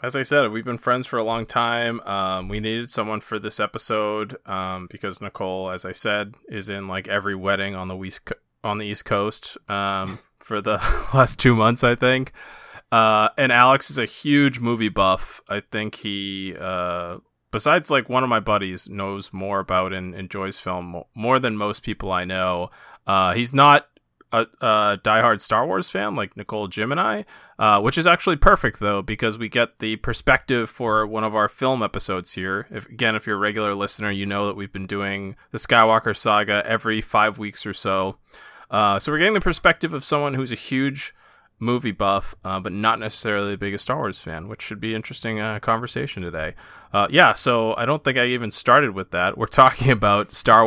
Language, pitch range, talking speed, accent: English, 100-115 Hz, 195 wpm, American